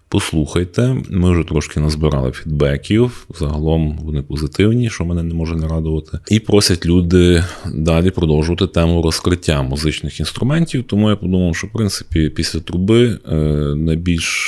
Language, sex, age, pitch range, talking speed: Ukrainian, male, 30-49, 75-95 Hz, 135 wpm